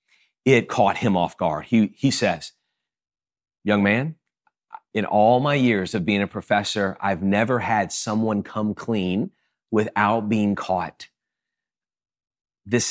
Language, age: English, 30-49